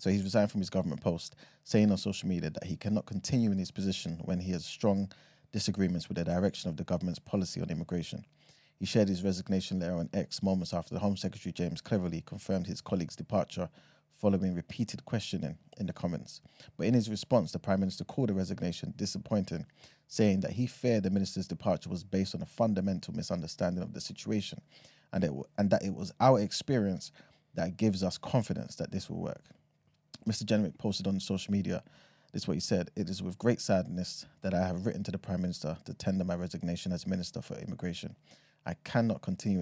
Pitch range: 90-110 Hz